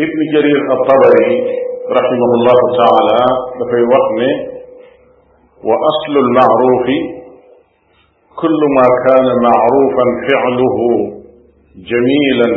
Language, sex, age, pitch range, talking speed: Italian, male, 50-69, 125-165 Hz, 75 wpm